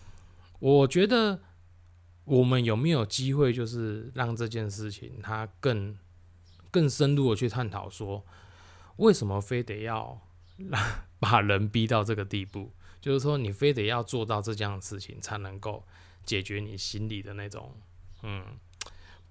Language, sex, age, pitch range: Chinese, male, 20-39, 90-120 Hz